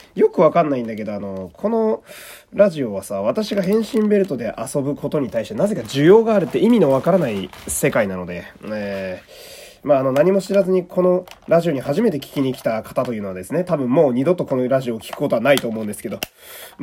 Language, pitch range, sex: Japanese, 115-170 Hz, male